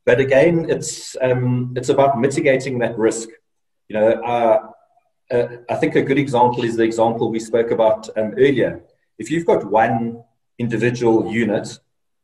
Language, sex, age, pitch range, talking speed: English, male, 30-49, 110-130 Hz, 155 wpm